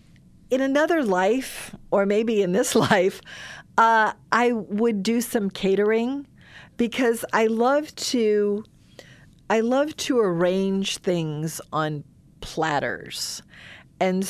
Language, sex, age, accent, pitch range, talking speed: English, female, 40-59, American, 160-220 Hz, 110 wpm